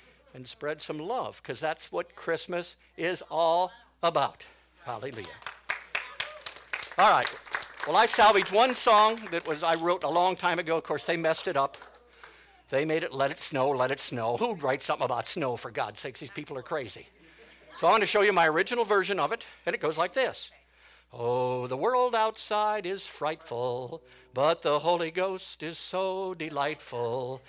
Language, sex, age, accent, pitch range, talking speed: English, male, 60-79, American, 155-210 Hz, 180 wpm